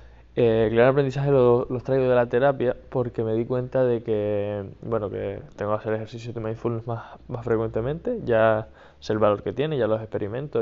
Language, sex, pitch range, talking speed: Spanish, male, 110-130 Hz, 205 wpm